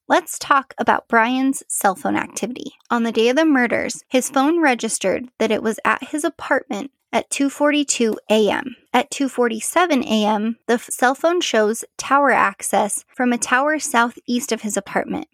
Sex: female